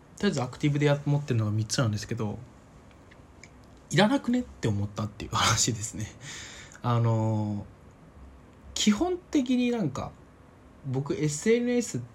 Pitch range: 110-150 Hz